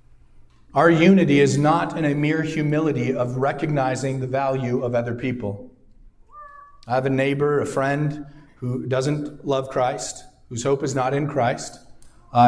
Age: 40-59